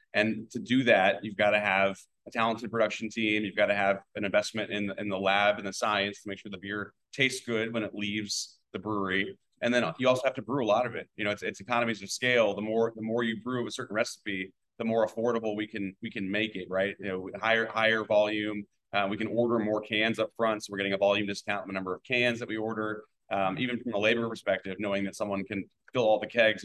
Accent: American